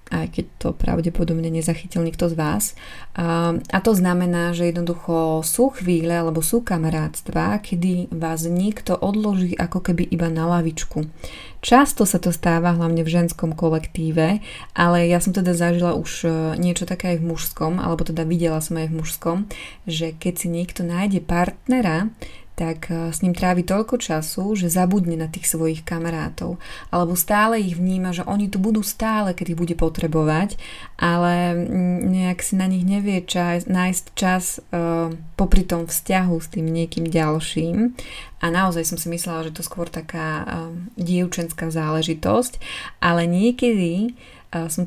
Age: 20-39